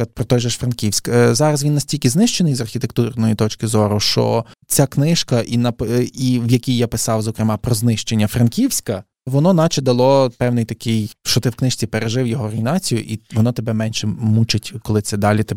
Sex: male